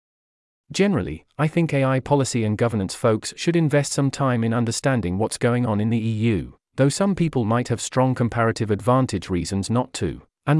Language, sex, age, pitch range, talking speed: English, male, 40-59, 110-140 Hz, 180 wpm